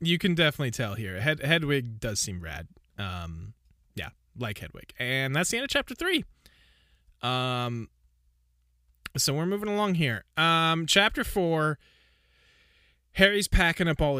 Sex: male